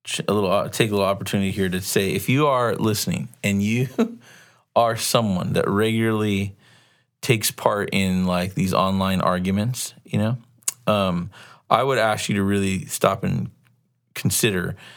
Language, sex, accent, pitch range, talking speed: English, male, American, 95-115 Hz, 150 wpm